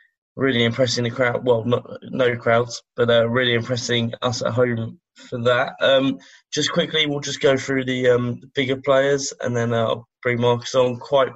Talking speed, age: 190 wpm, 20-39